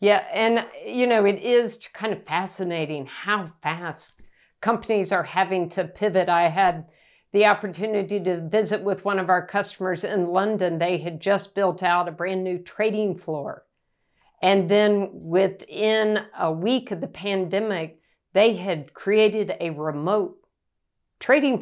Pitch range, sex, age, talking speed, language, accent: 175-210 Hz, female, 50-69, 145 wpm, English, American